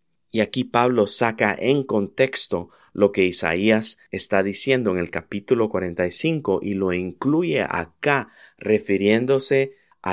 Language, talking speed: Spanish, 125 wpm